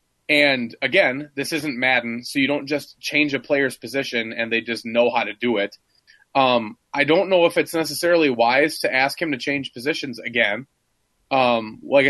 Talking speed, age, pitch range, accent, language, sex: 190 wpm, 20-39, 120-150 Hz, American, English, male